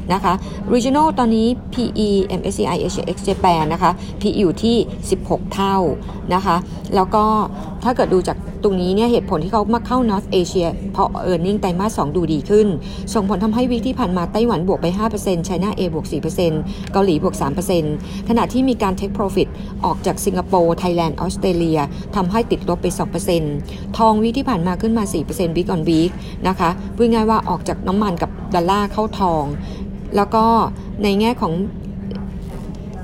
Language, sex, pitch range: Thai, female, 175-215 Hz